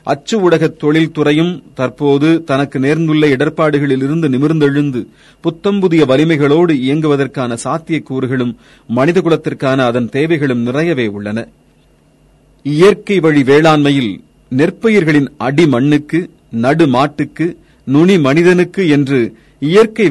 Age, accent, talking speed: 40-59, native, 80 wpm